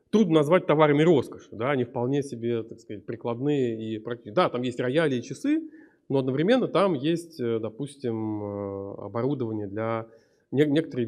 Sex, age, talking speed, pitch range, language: male, 30-49, 145 wpm, 115-150 Hz, Russian